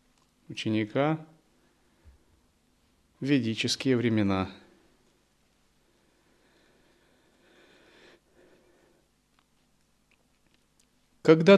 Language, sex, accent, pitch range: Russian, male, native, 115-160 Hz